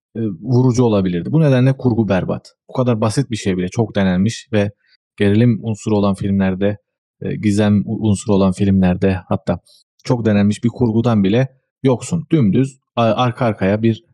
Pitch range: 105-130 Hz